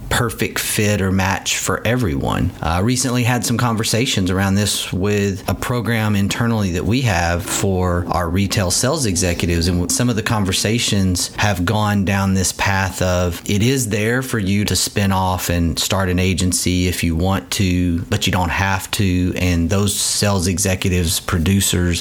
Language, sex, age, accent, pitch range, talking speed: English, male, 40-59, American, 90-115 Hz, 170 wpm